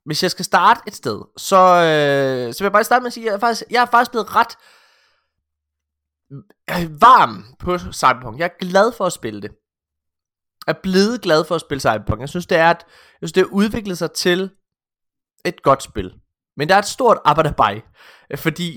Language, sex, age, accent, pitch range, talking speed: Danish, male, 20-39, native, 115-175 Hz, 210 wpm